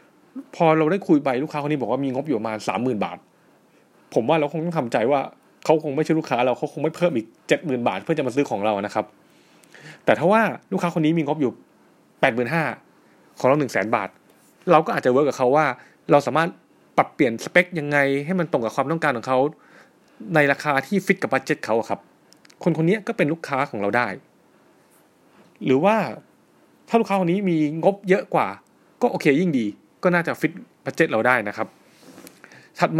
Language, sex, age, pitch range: Thai, male, 30-49, 135-180 Hz